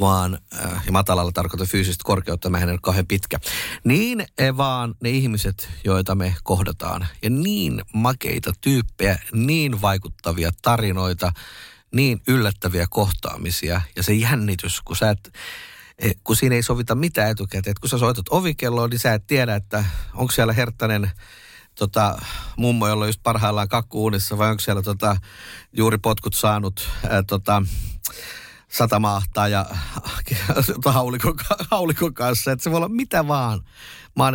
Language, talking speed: Finnish, 135 wpm